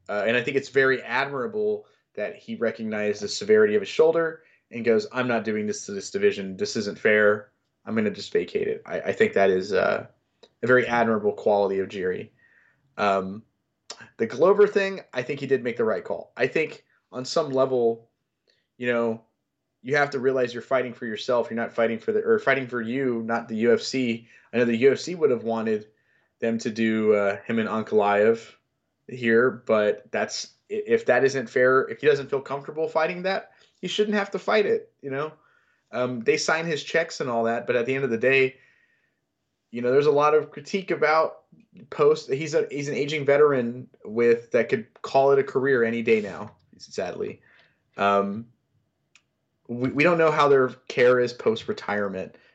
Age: 20-39